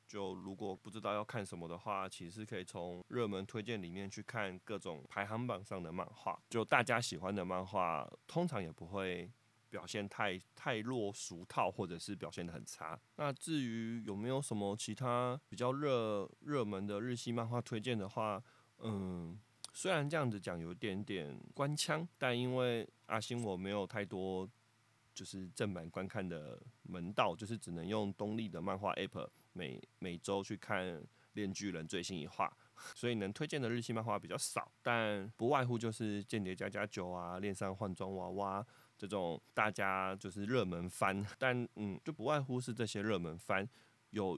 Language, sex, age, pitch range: Chinese, male, 20-39, 95-115 Hz